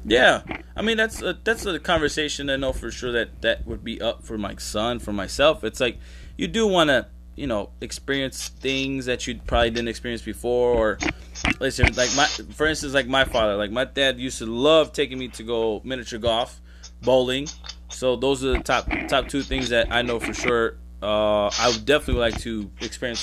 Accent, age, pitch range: American, 20-39, 105-135 Hz